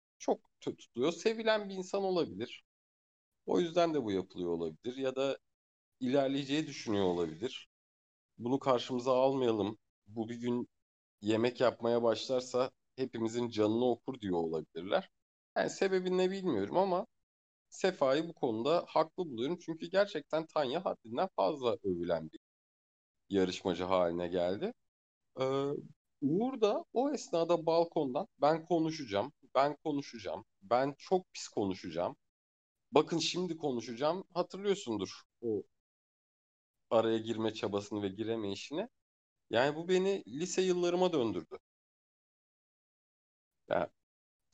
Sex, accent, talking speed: male, native, 110 wpm